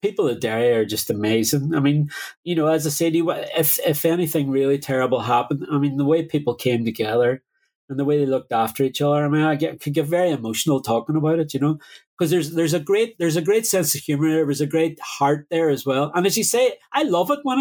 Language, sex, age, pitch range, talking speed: English, male, 30-49, 140-205 Hz, 250 wpm